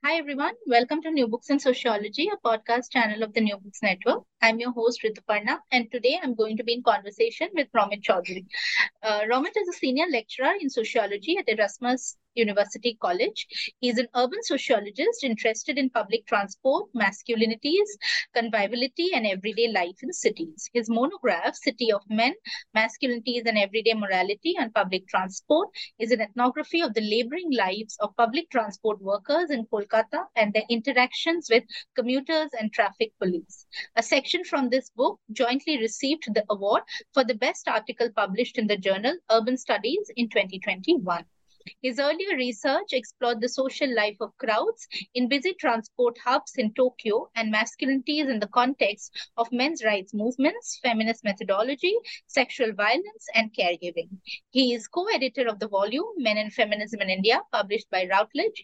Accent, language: Indian, English